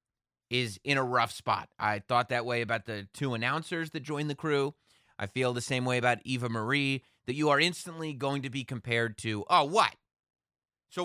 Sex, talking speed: male, 200 wpm